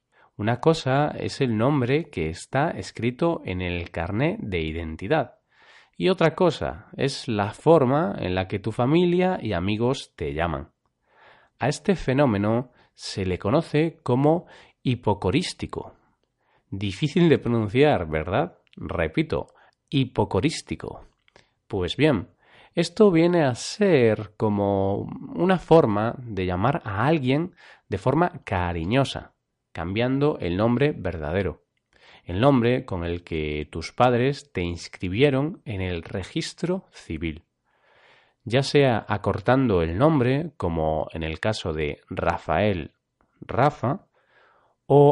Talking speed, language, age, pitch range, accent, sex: 115 wpm, Spanish, 30-49, 95-145 Hz, Spanish, male